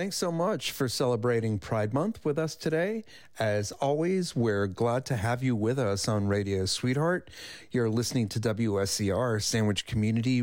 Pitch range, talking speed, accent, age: 100-125 Hz, 160 wpm, American, 40-59